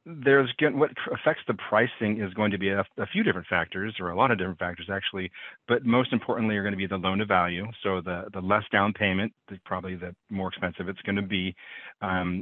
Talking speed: 225 wpm